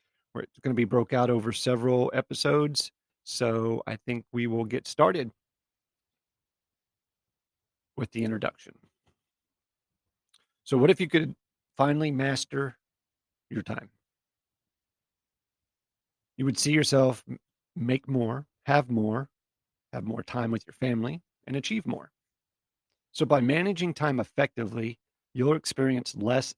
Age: 40-59